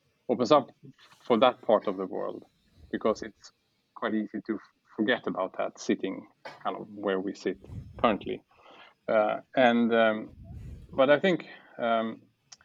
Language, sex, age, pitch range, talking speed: Swedish, male, 30-49, 105-125 Hz, 140 wpm